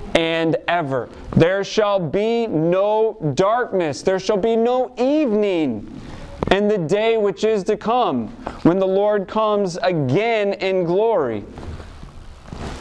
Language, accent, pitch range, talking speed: English, American, 170-220 Hz, 120 wpm